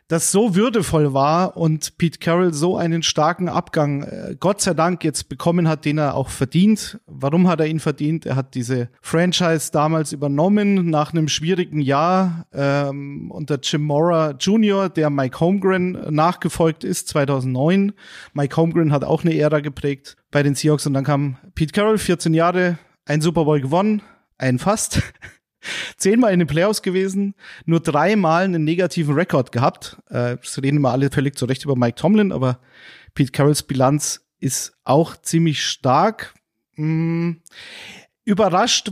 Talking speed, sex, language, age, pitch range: 155 wpm, male, German, 40-59, 145-180 Hz